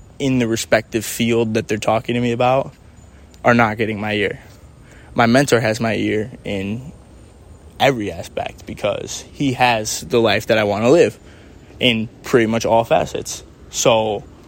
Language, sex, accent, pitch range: English, male, American, 115-140 Hz